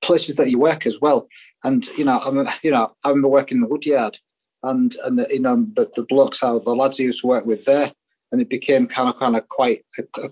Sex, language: male, English